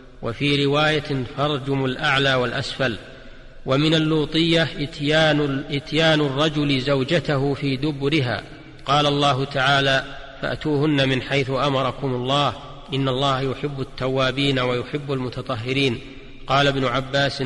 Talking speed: 105 wpm